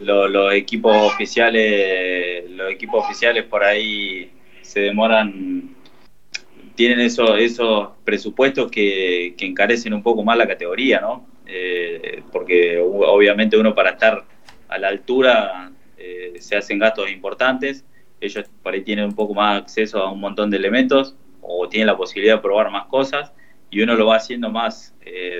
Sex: male